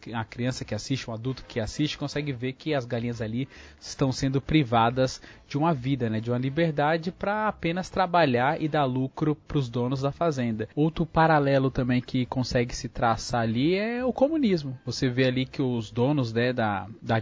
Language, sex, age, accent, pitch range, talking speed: Portuguese, male, 20-39, Brazilian, 120-150 Hz, 190 wpm